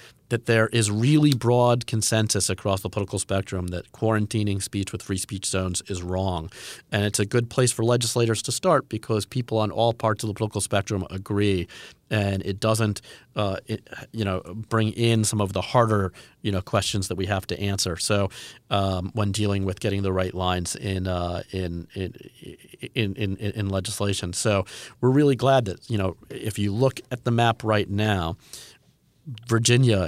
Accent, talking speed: American, 185 wpm